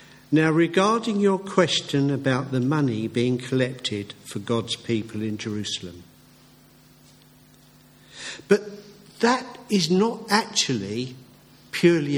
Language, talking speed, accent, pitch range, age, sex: English, 100 wpm, British, 120-170 Hz, 50-69, male